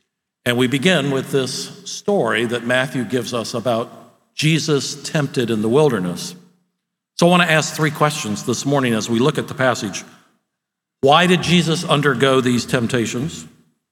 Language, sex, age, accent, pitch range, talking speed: English, male, 50-69, American, 130-175 Hz, 160 wpm